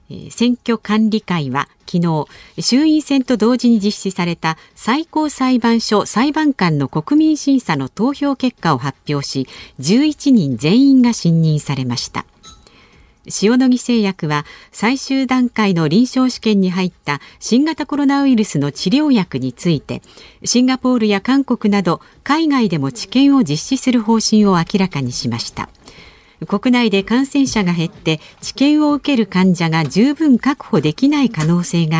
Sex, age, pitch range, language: female, 50-69, 160-255 Hz, Japanese